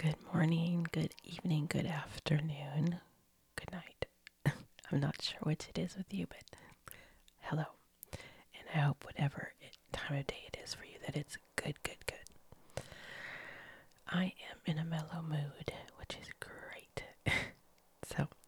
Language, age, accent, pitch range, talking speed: English, 30-49, American, 145-170 Hz, 145 wpm